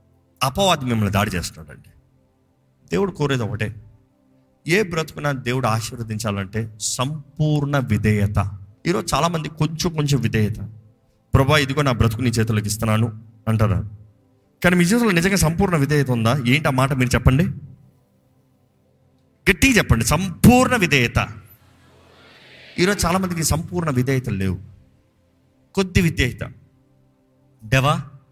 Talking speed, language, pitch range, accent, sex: 110 wpm, Telugu, 110-150 Hz, native, male